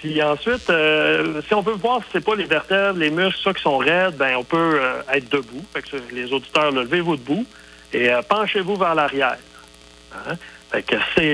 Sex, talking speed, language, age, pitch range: male, 210 wpm, French, 60-79, 130-170 Hz